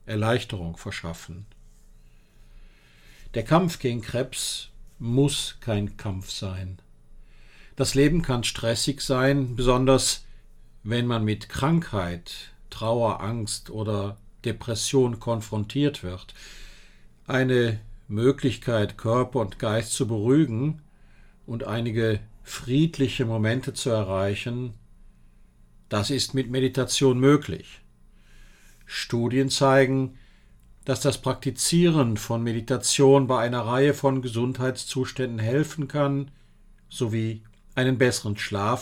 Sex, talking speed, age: male, 95 wpm, 50-69